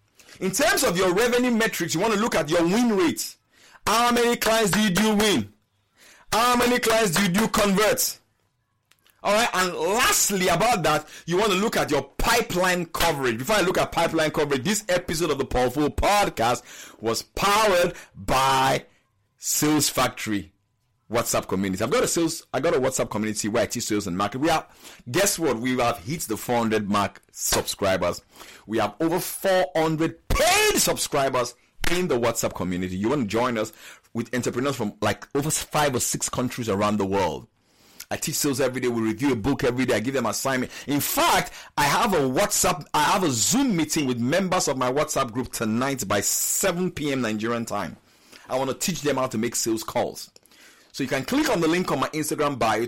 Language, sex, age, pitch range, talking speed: English, male, 50-69, 115-185 Hz, 195 wpm